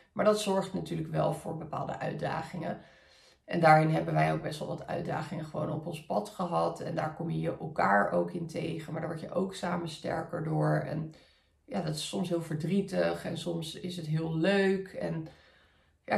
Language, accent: Dutch, Dutch